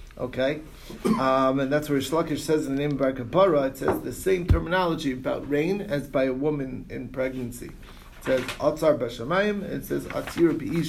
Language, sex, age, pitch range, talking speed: English, male, 30-49, 125-155 Hz, 170 wpm